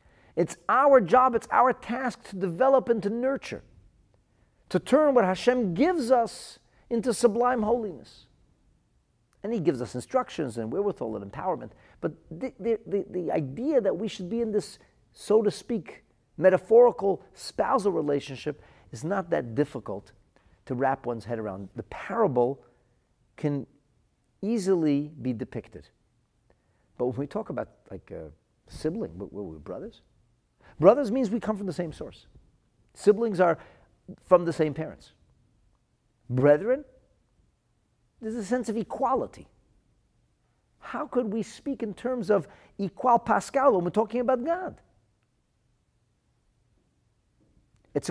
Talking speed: 135 wpm